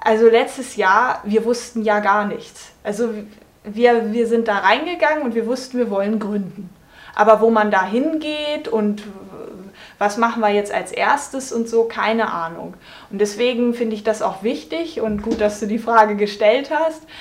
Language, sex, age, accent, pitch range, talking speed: German, female, 20-39, German, 210-240 Hz, 180 wpm